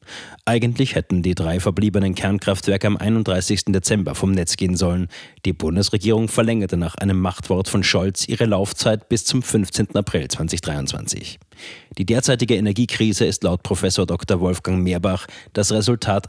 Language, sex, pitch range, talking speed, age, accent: German, male, 95-115 Hz, 145 wpm, 30-49, German